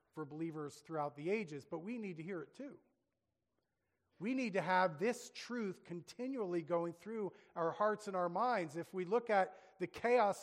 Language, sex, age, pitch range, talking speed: English, male, 40-59, 150-190 Hz, 185 wpm